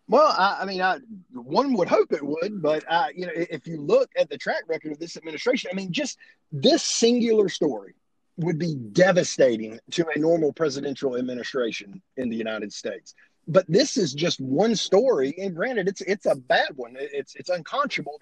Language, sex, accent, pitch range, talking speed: English, male, American, 145-195 Hz, 190 wpm